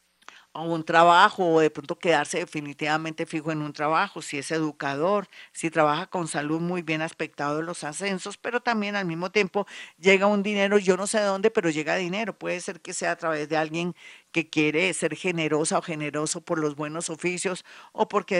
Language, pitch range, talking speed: Spanish, 155-210 Hz, 200 wpm